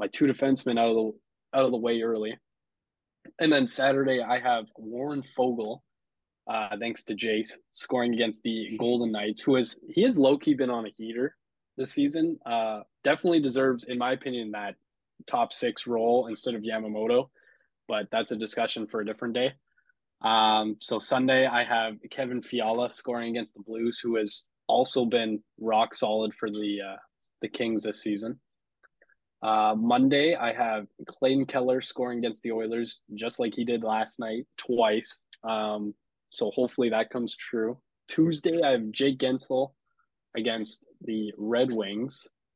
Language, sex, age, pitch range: English, male, 20-39, 110-130 Hz